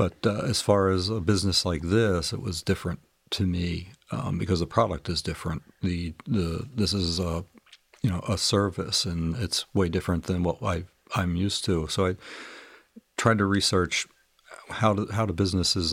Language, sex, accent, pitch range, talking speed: English, male, American, 90-100 Hz, 185 wpm